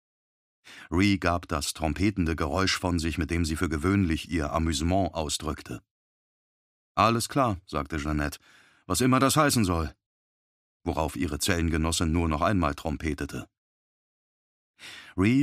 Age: 40-59